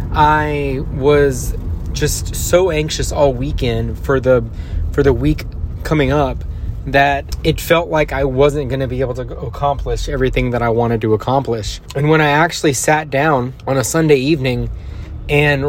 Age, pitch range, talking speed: 20-39, 85-140 Hz, 165 wpm